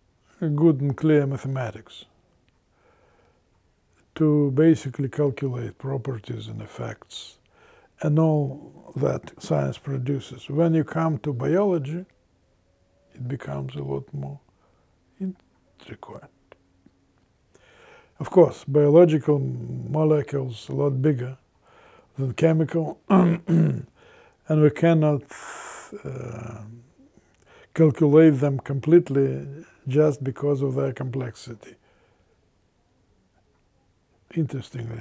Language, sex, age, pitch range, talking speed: English, male, 50-69, 115-155 Hz, 80 wpm